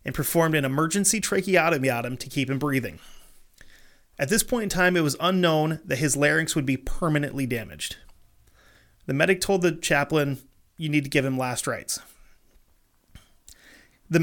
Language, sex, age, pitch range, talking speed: English, male, 30-49, 135-170 Hz, 165 wpm